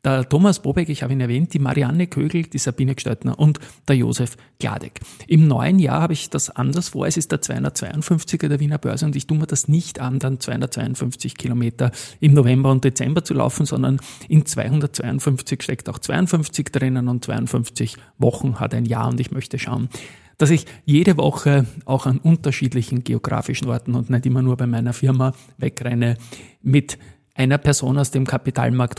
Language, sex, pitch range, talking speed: German, male, 125-150 Hz, 180 wpm